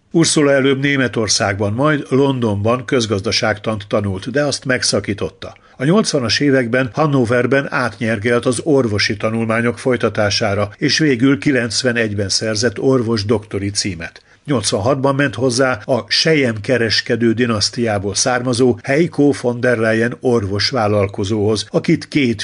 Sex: male